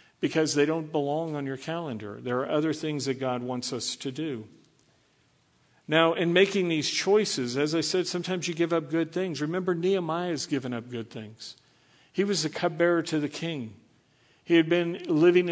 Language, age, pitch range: English, 50-69, 130-160 Hz